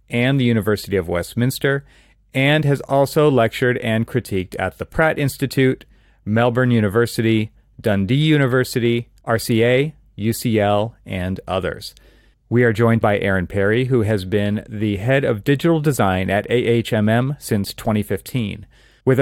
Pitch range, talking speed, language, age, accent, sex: 105-125 Hz, 130 wpm, English, 30-49, American, male